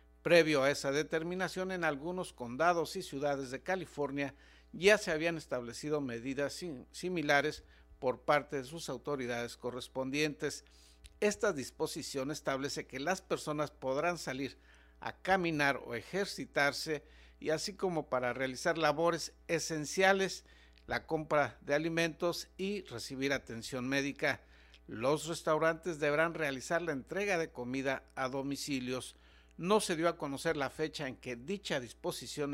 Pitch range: 125-165 Hz